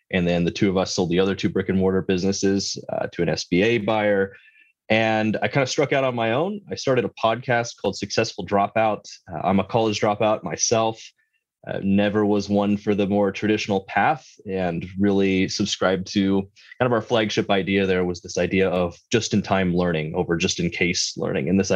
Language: English